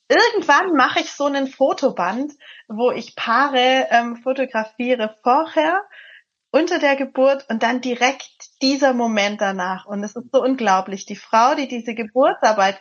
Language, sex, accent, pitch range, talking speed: English, female, German, 210-265 Hz, 145 wpm